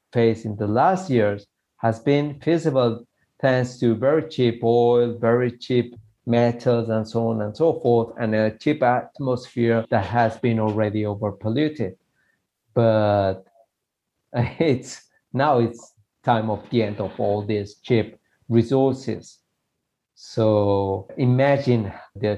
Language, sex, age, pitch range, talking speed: English, male, 50-69, 105-125 Hz, 125 wpm